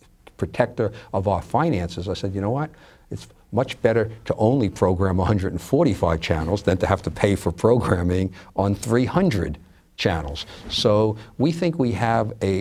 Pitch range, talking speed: 95-115 Hz, 155 wpm